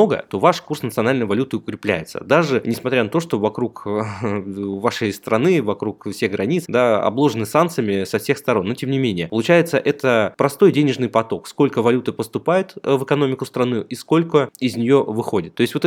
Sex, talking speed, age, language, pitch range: male, 170 wpm, 20-39, Russian, 110-140 Hz